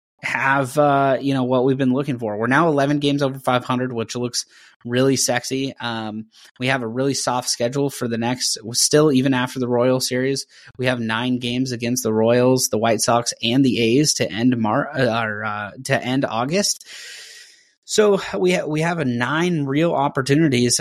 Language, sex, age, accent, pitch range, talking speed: English, male, 20-39, American, 120-140 Hz, 190 wpm